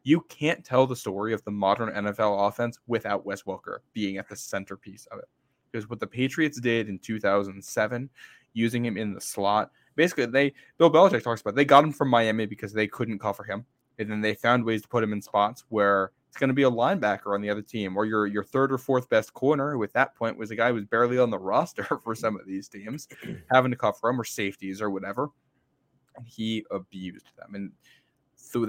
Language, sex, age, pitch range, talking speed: English, male, 10-29, 100-120 Hz, 225 wpm